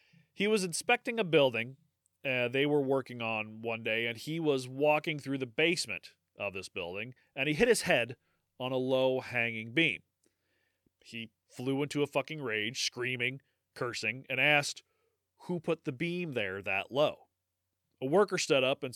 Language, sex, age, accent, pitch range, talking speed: English, male, 30-49, American, 120-180 Hz, 170 wpm